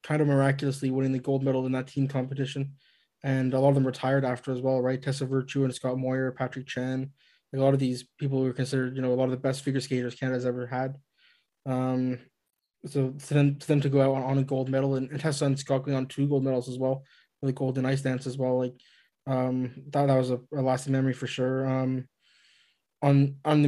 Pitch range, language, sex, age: 130-140 Hz, English, male, 20-39